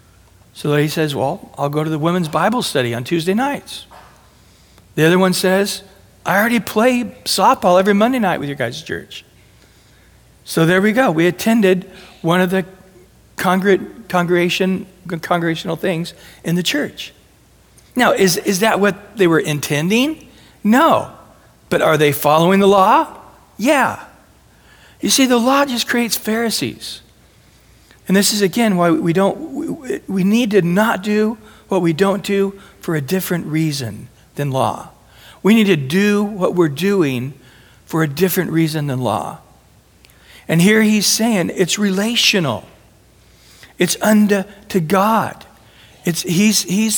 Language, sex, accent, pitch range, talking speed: English, male, American, 165-205 Hz, 145 wpm